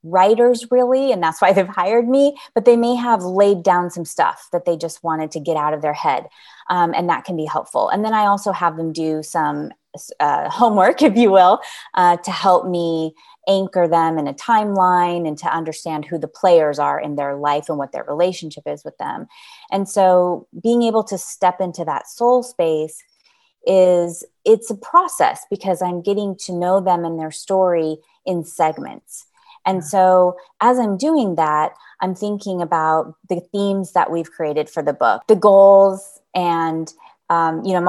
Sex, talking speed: female, 190 wpm